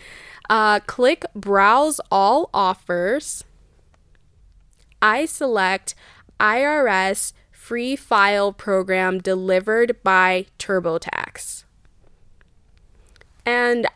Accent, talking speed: American, 65 wpm